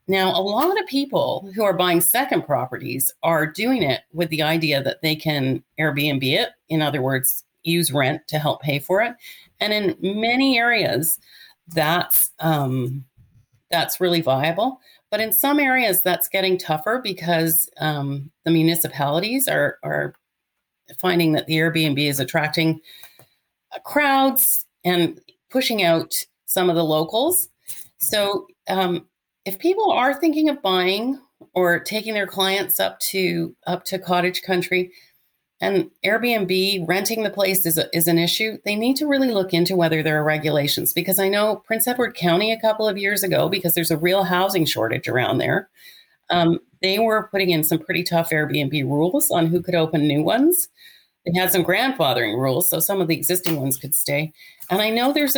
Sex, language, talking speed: female, English, 170 wpm